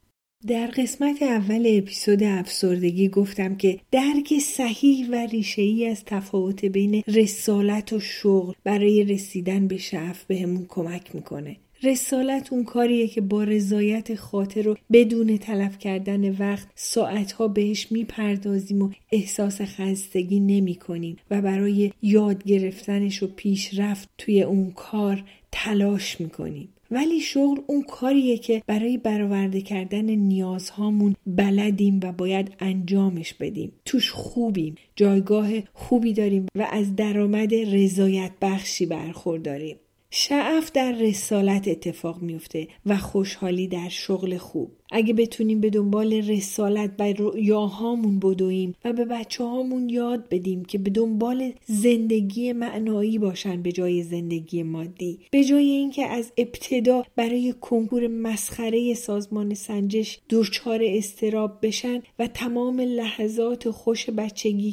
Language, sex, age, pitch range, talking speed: Persian, female, 40-59, 195-230 Hz, 120 wpm